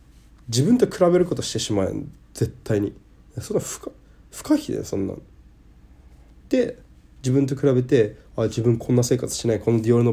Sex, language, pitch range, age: male, Japanese, 95-120 Hz, 20-39